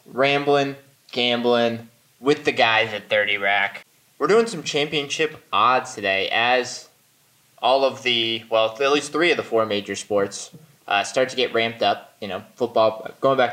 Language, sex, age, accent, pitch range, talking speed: English, male, 20-39, American, 110-135 Hz, 170 wpm